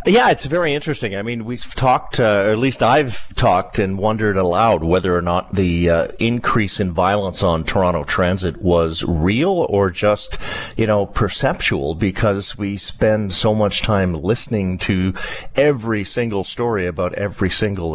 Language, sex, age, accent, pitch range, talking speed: English, male, 50-69, American, 90-110 Hz, 165 wpm